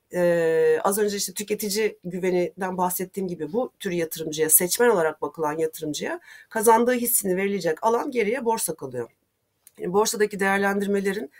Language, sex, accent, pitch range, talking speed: Turkish, female, native, 175-225 Hz, 130 wpm